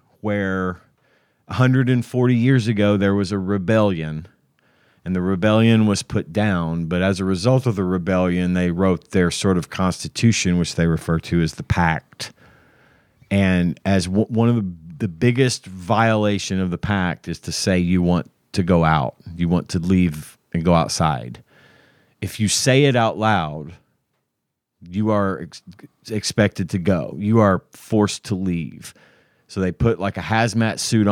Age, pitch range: 30-49, 90-110 Hz